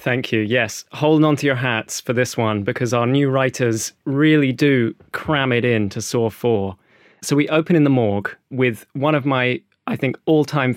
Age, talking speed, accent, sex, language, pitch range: 20-39, 200 wpm, British, male, English, 115-145 Hz